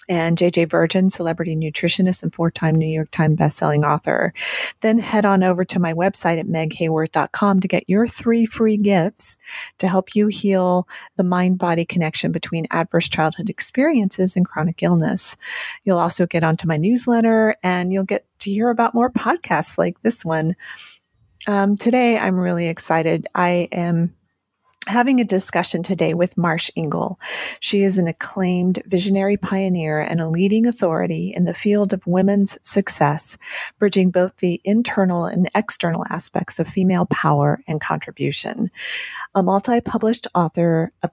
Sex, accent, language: female, American, English